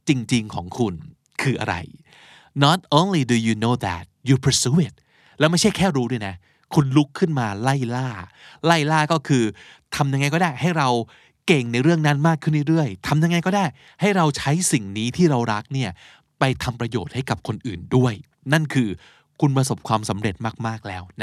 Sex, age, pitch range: male, 20-39, 120-170 Hz